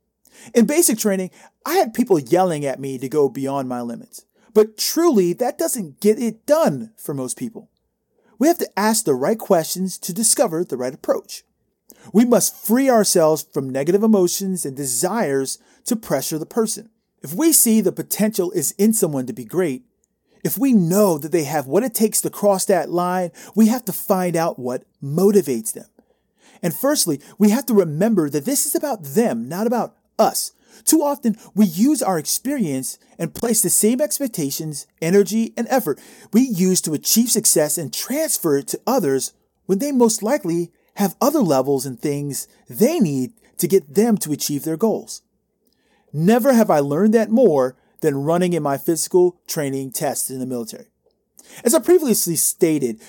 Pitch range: 155-230 Hz